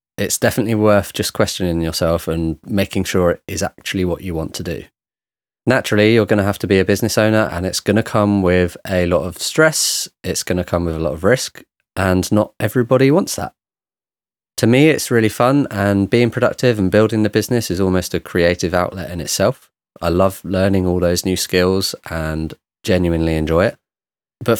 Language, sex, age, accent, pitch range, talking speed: English, male, 20-39, British, 90-110 Hz, 200 wpm